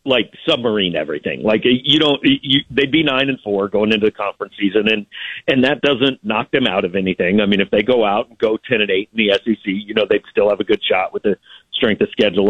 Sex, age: male, 50-69